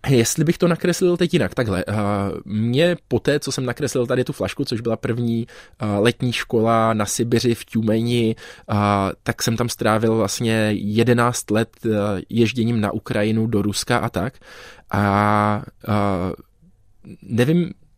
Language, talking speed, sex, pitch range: Czech, 135 wpm, male, 105-125 Hz